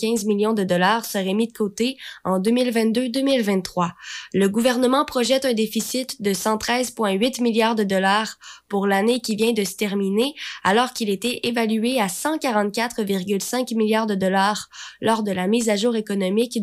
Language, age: French, 20-39